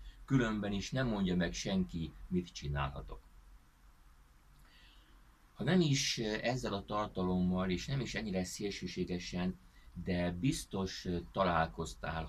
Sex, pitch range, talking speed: male, 75-100 Hz, 105 wpm